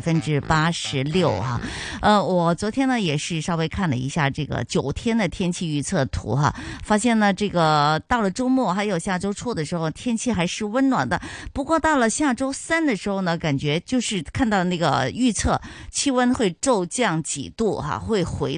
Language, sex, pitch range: Chinese, female, 145-220 Hz